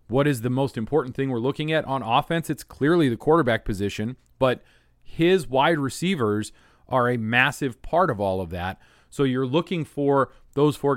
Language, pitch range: English, 115-160 Hz